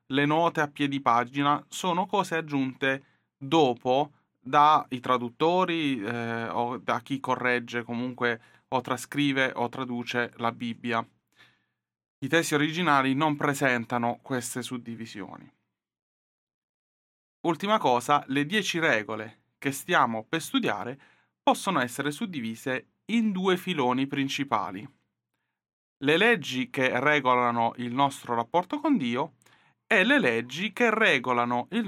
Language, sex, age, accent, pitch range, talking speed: Italian, male, 30-49, native, 120-155 Hz, 115 wpm